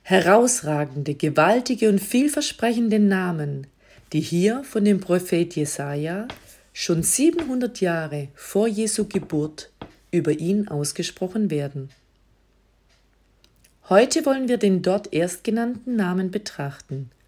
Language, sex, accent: German, female, German